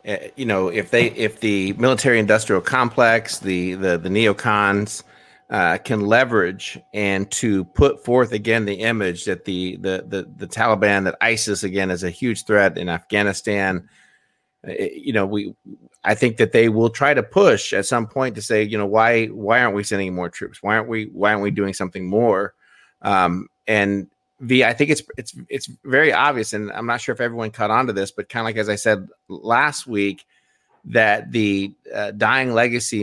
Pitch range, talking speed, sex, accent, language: 100-115 Hz, 195 wpm, male, American, English